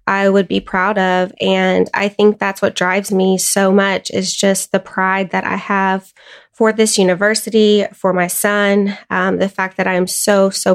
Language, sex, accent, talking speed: English, female, American, 195 wpm